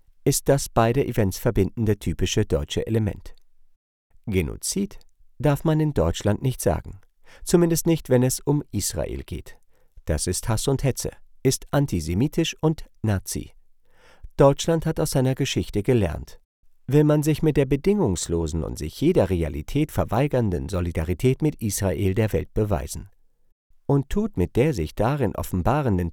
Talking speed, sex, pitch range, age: 140 wpm, male, 95-140 Hz, 50-69